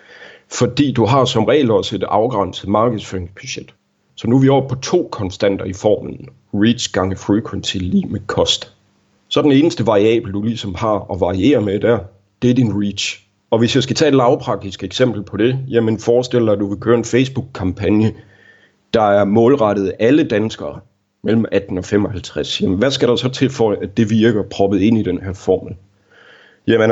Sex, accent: male, native